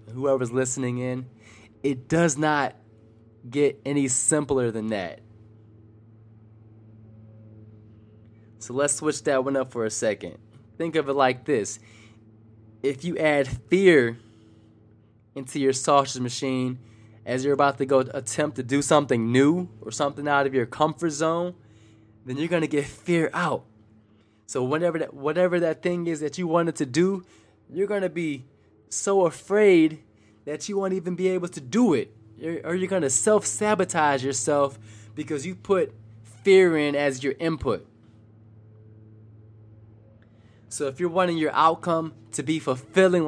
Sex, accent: male, American